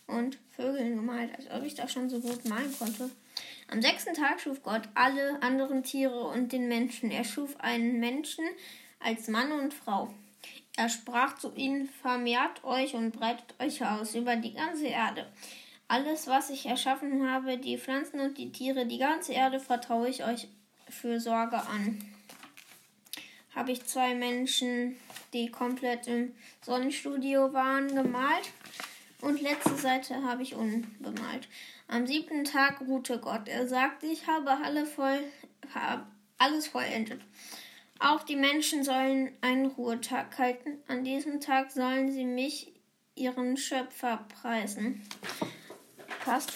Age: 10-29